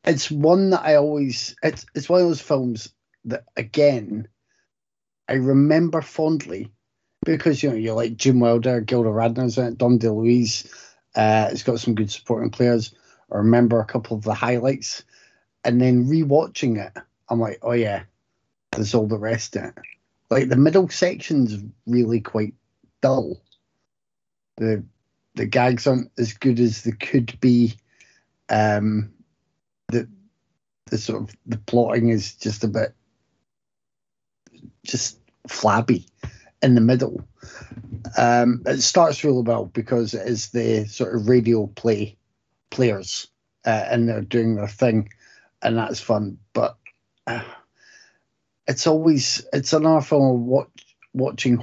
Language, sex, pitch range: English, male, 110-130 Hz